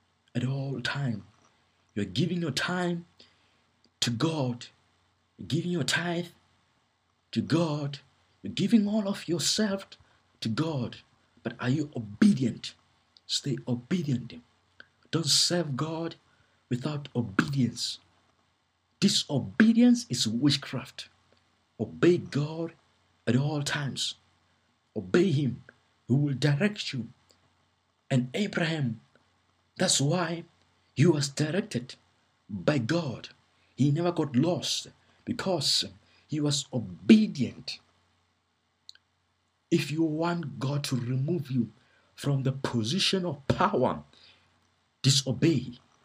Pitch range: 110-160 Hz